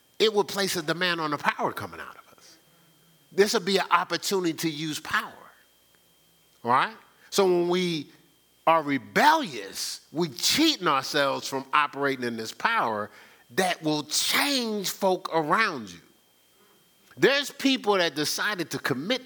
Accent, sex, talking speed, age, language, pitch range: American, male, 145 wpm, 50-69, English, 115-180 Hz